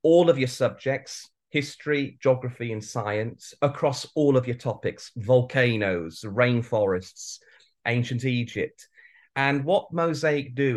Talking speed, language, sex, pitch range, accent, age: 115 wpm, English, male, 110-135 Hz, British, 30-49